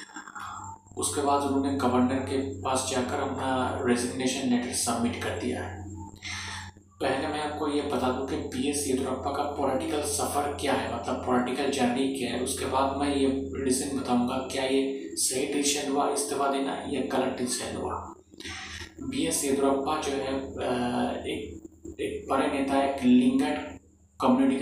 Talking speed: 145 wpm